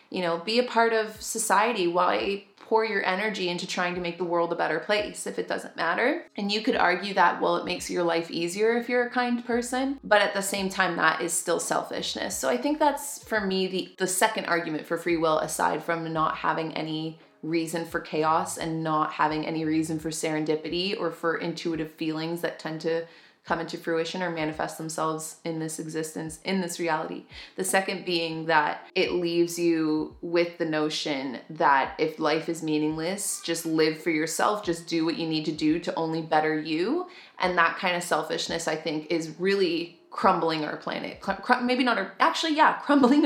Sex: female